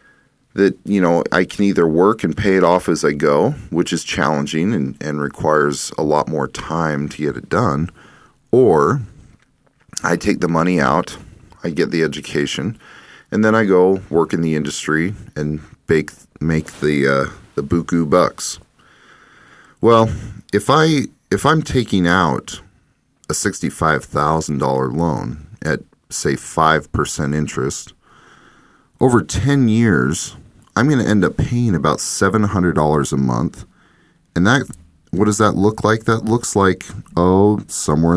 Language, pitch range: English, 80-105 Hz